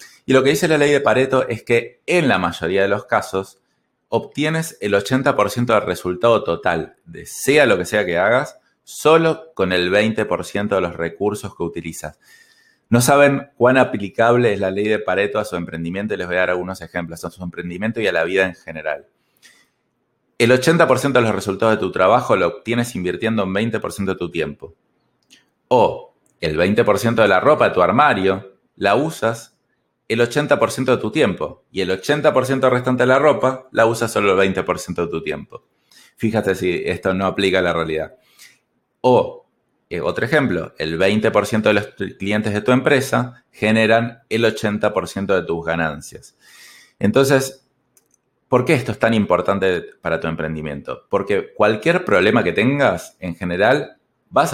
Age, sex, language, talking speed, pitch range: 20-39, male, Spanish, 175 wpm, 95-125 Hz